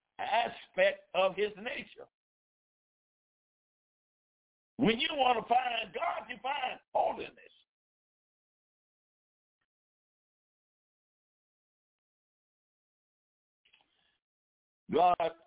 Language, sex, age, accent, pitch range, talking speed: English, male, 60-79, American, 170-255 Hz, 55 wpm